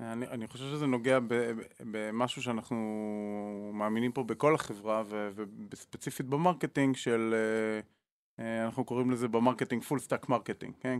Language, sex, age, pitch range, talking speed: Hebrew, male, 20-39, 115-140 Hz, 120 wpm